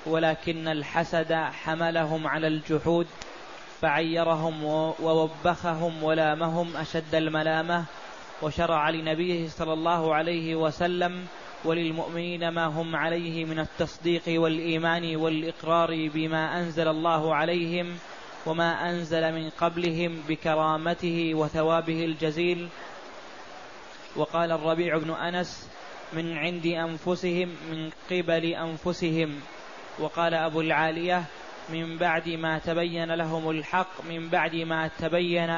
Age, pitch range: 20-39, 160-170 Hz